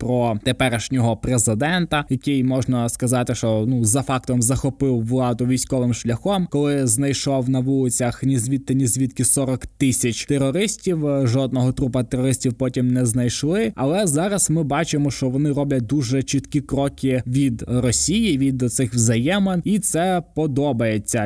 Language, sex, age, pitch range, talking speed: Ukrainian, male, 20-39, 120-145 Hz, 140 wpm